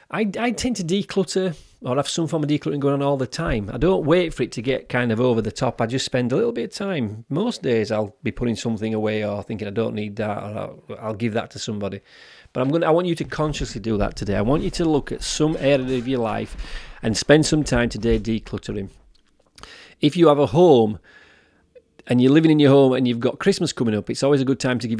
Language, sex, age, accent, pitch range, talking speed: English, male, 30-49, British, 115-160 Hz, 260 wpm